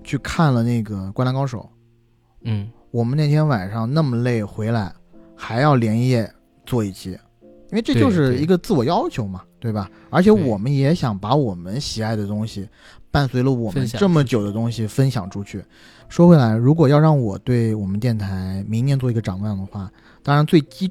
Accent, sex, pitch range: native, male, 105-135 Hz